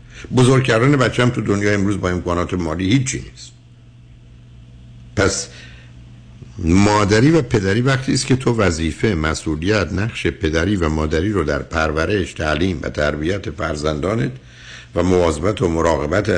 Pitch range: 75-110 Hz